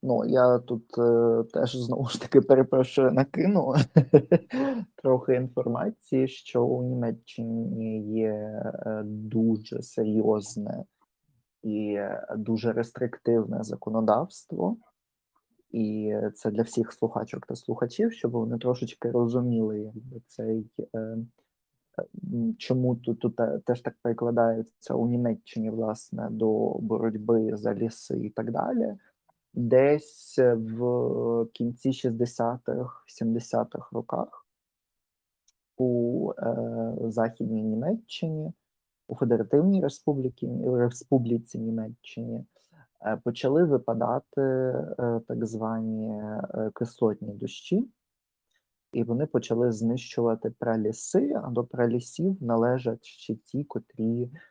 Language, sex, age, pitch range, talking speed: Ukrainian, male, 20-39, 115-135 Hz, 100 wpm